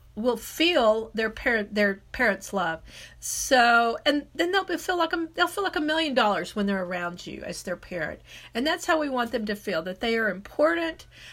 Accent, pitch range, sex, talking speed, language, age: American, 210-295 Hz, female, 205 wpm, English, 50-69